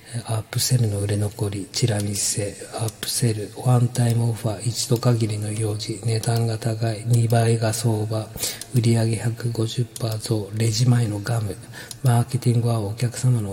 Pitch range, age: 110-125 Hz, 40-59